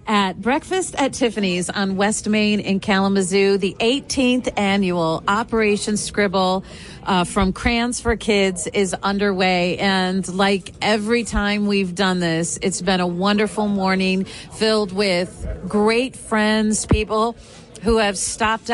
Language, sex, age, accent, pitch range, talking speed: English, female, 40-59, American, 190-225 Hz, 130 wpm